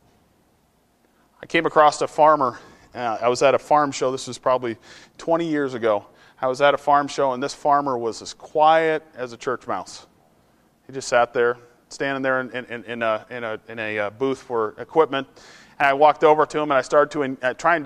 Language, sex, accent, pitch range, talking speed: English, male, American, 120-155 Hz, 220 wpm